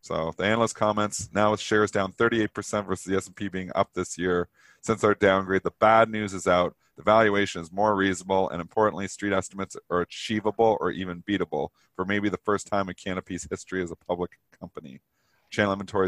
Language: English